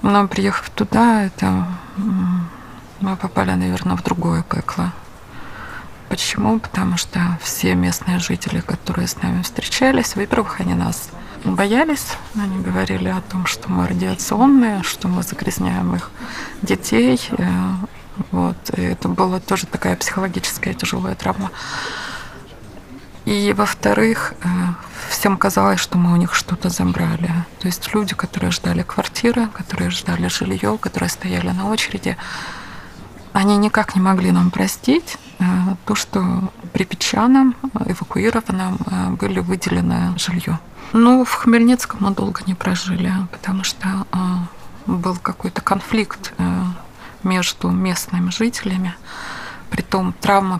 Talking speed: 115 wpm